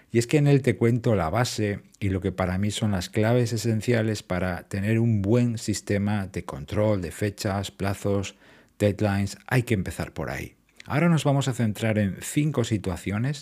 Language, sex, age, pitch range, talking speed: Spanish, male, 50-69, 95-115 Hz, 190 wpm